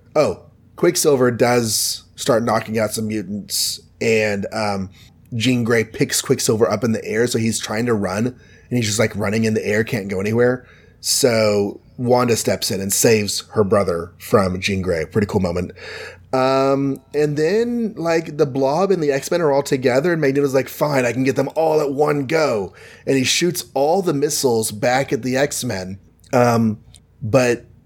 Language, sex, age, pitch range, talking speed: English, male, 30-49, 105-135 Hz, 185 wpm